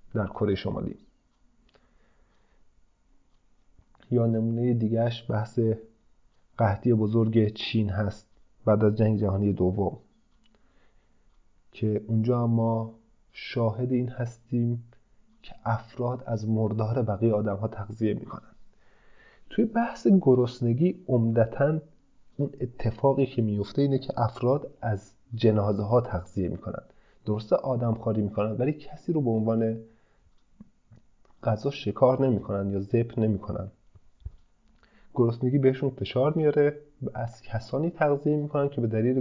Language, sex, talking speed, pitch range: Persian, male, 115 wpm, 105-120 Hz